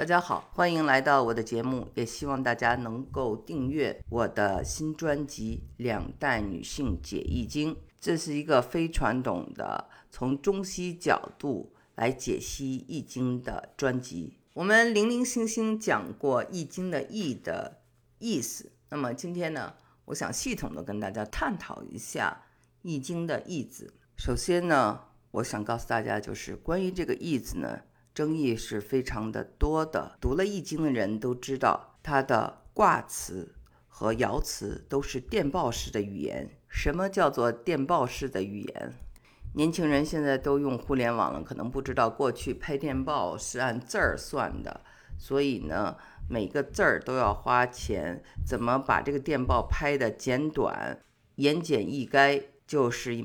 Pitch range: 120-160 Hz